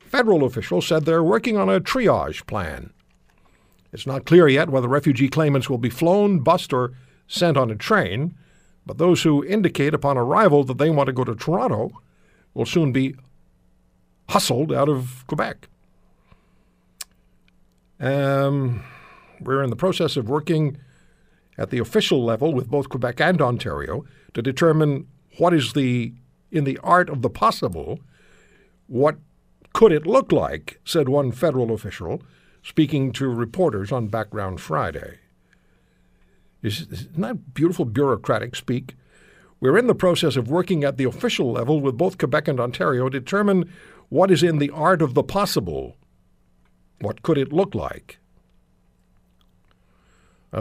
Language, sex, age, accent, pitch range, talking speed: English, male, 60-79, American, 130-165 Hz, 145 wpm